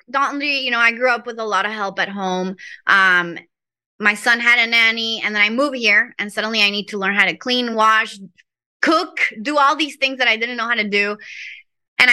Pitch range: 200-255 Hz